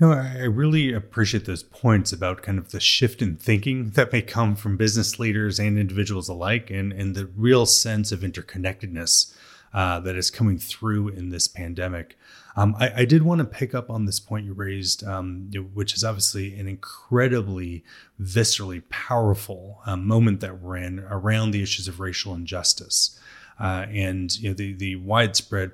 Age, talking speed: 30-49, 175 wpm